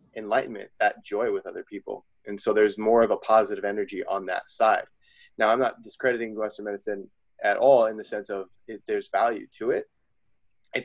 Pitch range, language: 105-155 Hz, English